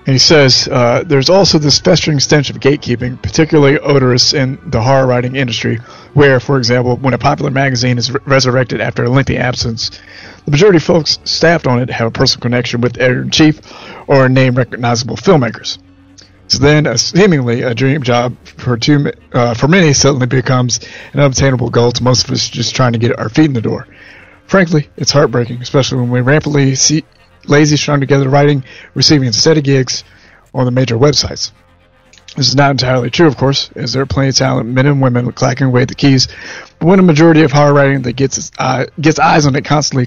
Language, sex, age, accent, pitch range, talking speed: English, male, 30-49, American, 120-145 Hz, 200 wpm